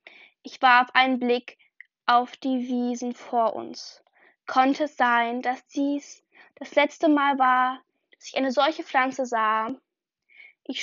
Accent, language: German, German